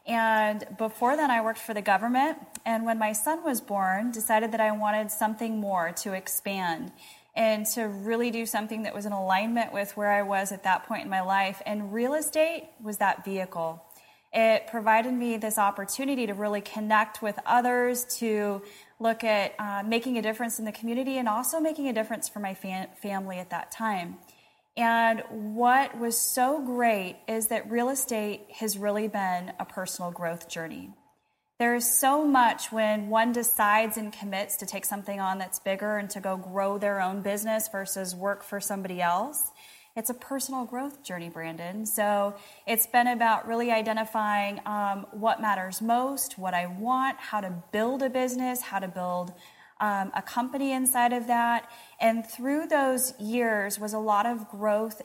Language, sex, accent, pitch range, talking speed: English, female, American, 200-235 Hz, 180 wpm